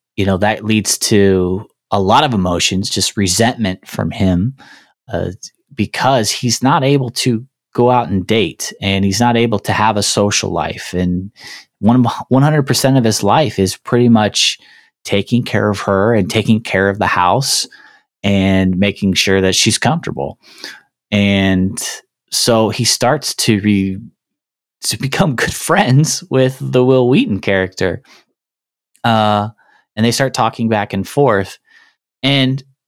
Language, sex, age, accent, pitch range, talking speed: English, male, 20-39, American, 100-125 Hz, 150 wpm